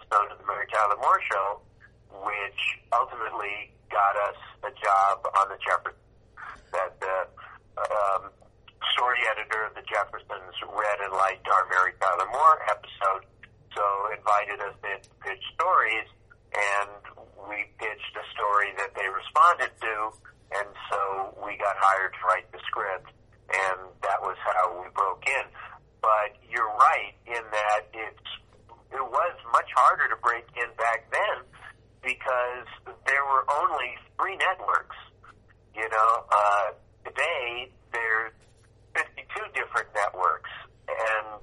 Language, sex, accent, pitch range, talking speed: English, male, American, 100-115 Hz, 135 wpm